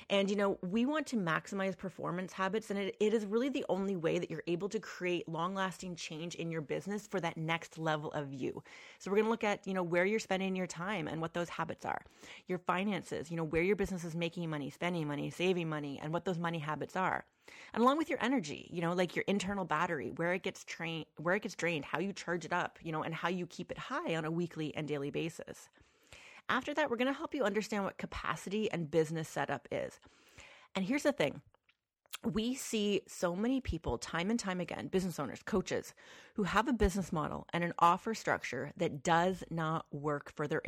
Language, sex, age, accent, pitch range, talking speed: English, female, 30-49, American, 160-200 Hz, 225 wpm